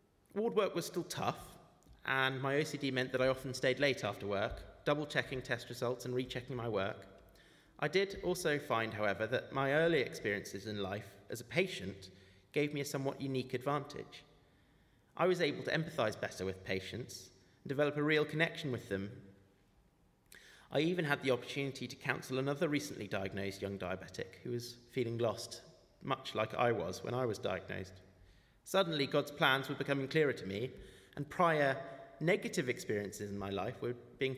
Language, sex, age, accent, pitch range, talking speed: English, male, 30-49, British, 105-145 Hz, 175 wpm